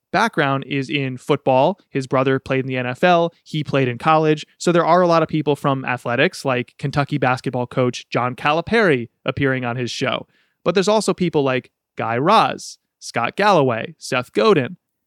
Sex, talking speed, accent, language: male, 175 wpm, American, English